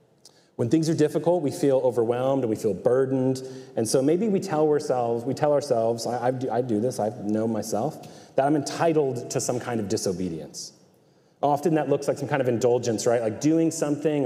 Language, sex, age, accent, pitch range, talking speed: English, male, 30-49, American, 120-155 Hz, 200 wpm